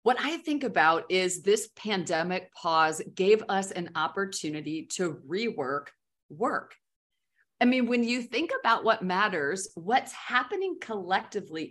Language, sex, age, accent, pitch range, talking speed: English, female, 40-59, American, 175-235 Hz, 135 wpm